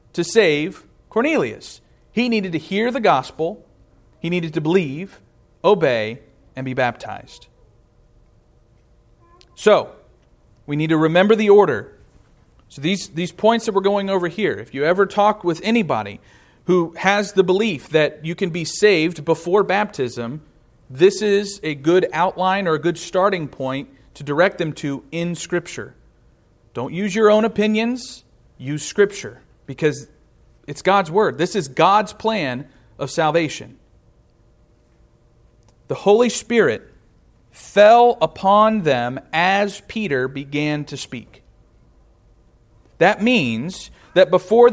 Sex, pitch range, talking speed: male, 140-205 Hz, 130 wpm